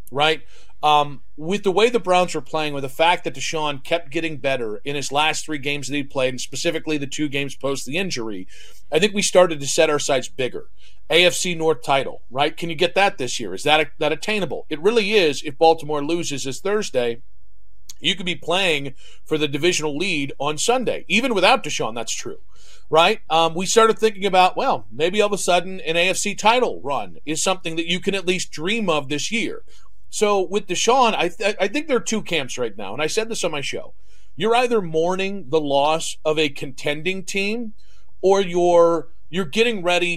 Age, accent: 40-59, American